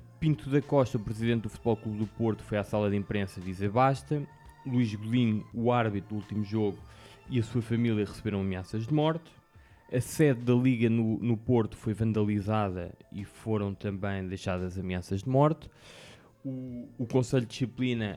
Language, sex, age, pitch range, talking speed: Portuguese, male, 20-39, 100-125 Hz, 180 wpm